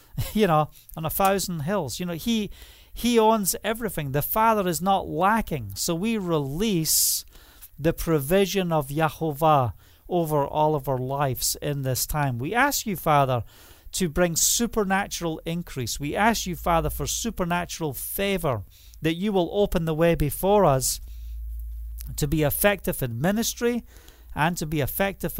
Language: English